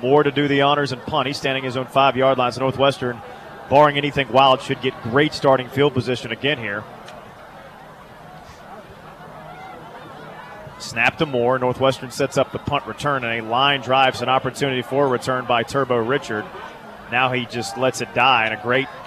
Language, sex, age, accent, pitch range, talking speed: English, male, 30-49, American, 130-145 Hz, 175 wpm